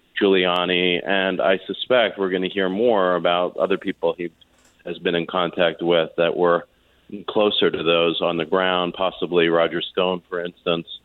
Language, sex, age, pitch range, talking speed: English, male, 40-59, 90-130 Hz, 170 wpm